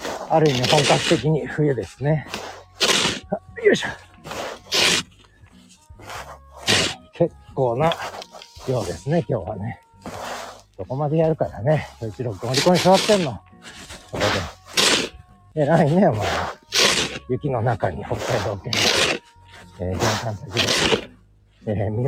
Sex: male